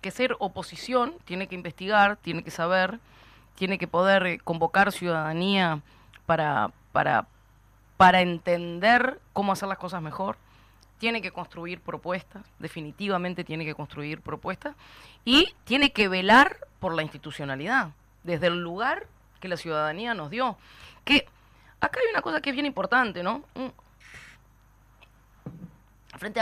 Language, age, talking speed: Spanish, 20-39, 130 wpm